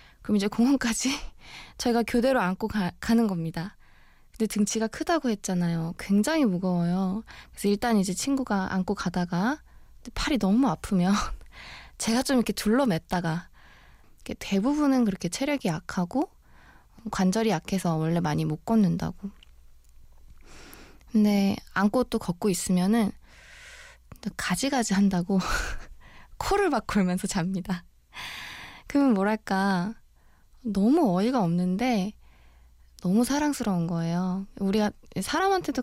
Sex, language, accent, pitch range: female, Korean, native, 180-235 Hz